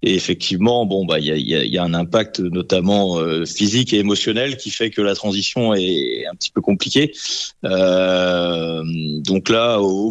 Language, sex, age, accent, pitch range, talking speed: French, male, 20-39, French, 95-115 Hz, 195 wpm